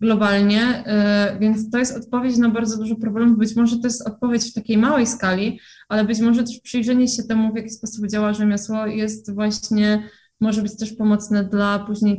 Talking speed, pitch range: 185 wpm, 195-220 Hz